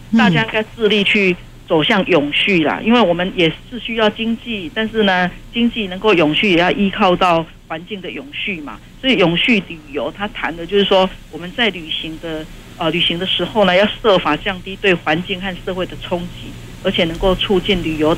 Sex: female